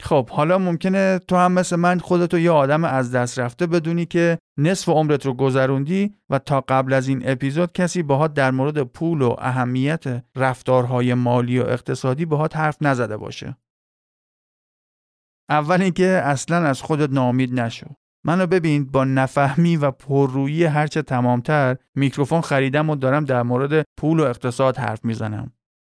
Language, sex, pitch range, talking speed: Persian, male, 125-170 Hz, 155 wpm